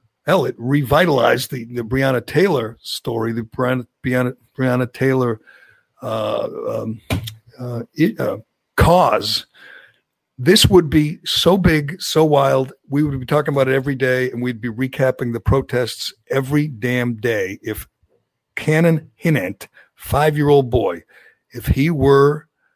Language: English